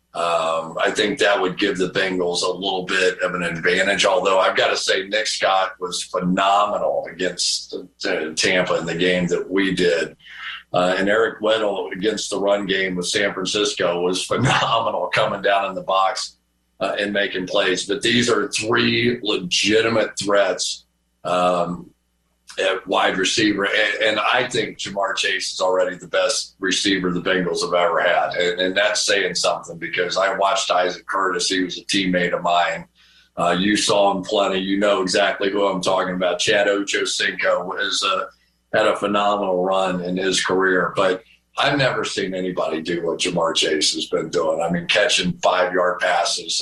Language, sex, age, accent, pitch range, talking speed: English, male, 50-69, American, 90-100 Hz, 180 wpm